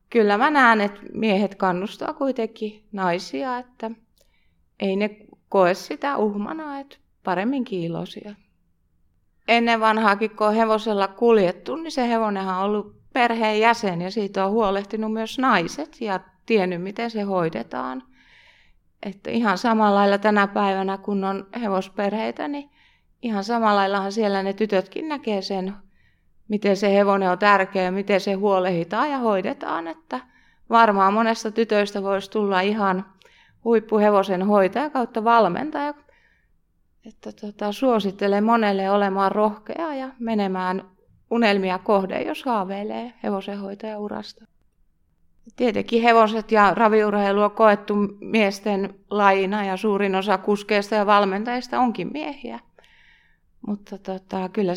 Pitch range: 195-225 Hz